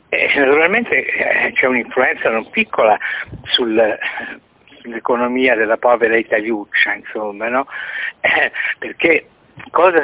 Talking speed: 90 wpm